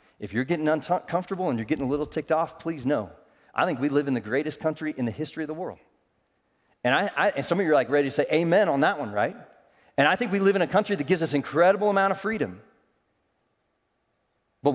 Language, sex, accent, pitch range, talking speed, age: English, male, American, 120-165 Hz, 245 wpm, 40-59